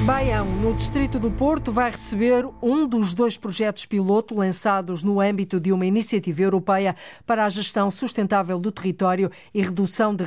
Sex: female